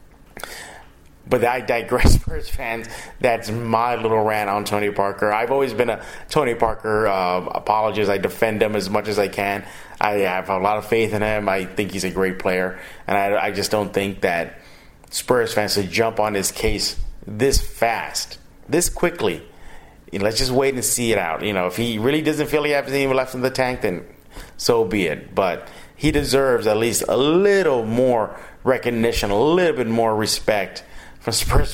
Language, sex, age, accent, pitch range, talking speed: English, male, 30-49, American, 105-135 Hz, 195 wpm